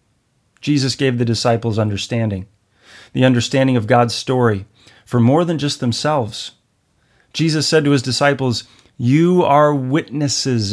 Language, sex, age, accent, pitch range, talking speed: English, male, 40-59, American, 110-130 Hz, 130 wpm